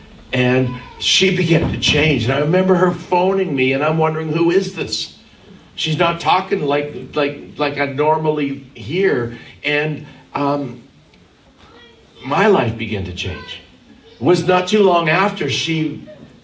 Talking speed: 145 wpm